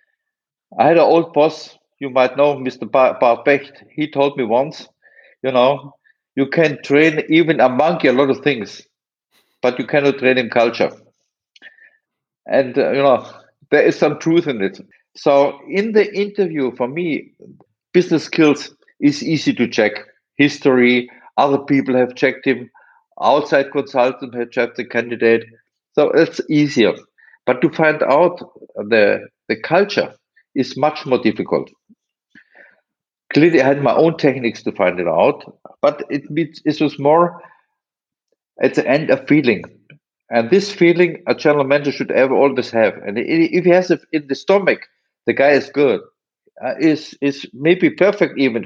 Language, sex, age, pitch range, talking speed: English, male, 50-69, 130-165 Hz, 160 wpm